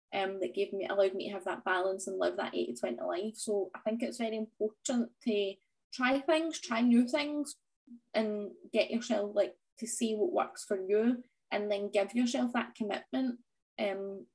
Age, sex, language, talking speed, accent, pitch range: 10-29, female, English, 185 wpm, British, 210-250 Hz